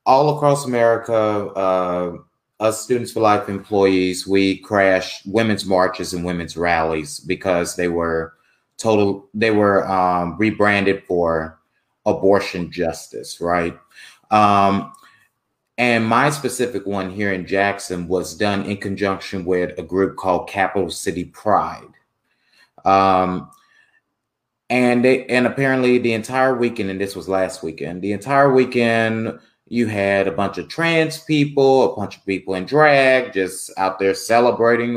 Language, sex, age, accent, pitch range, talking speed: English, male, 30-49, American, 90-115 Hz, 135 wpm